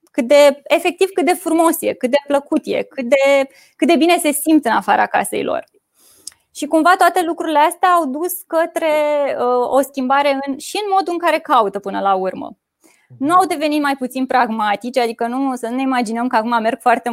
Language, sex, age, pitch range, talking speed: Romanian, female, 20-39, 240-320 Hz, 205 wpm